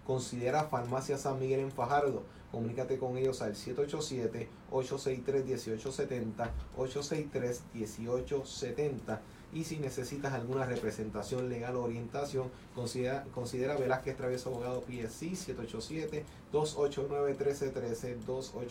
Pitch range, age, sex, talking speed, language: 120-140 Hz, 30-49, male, 85 wpm, Spanish